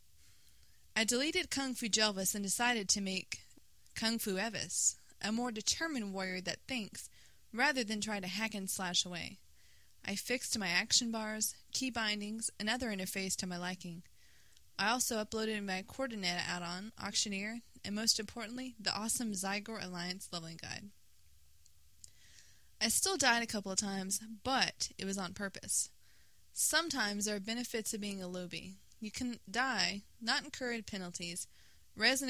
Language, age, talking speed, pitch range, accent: English, 20-39, 155 wpm, 180-225 Hz, American